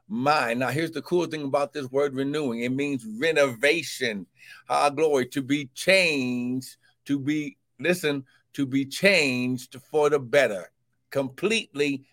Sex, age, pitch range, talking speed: male, 60-79, 130-190 Hz, 140 wpm